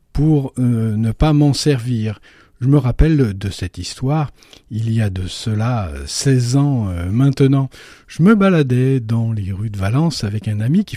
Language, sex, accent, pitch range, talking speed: French, male, French, 110-145 Hz, 180 wpm